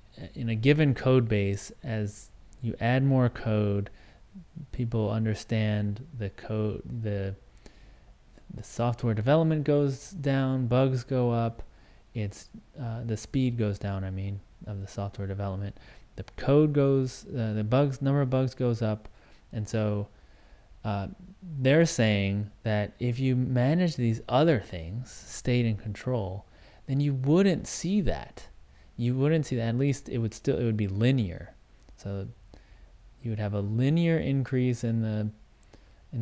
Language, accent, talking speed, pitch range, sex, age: English, American, 145 wpm, 100-130 Hz, male, 30-49